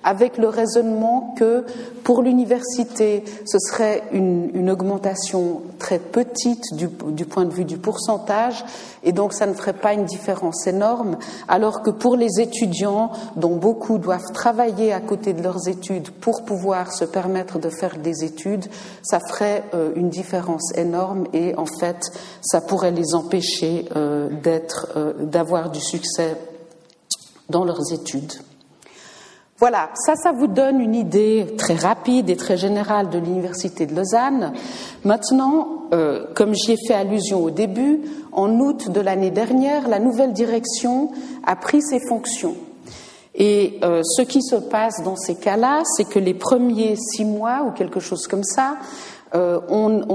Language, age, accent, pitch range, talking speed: French, 50-69, French, 180-240 Hz, 155 wpm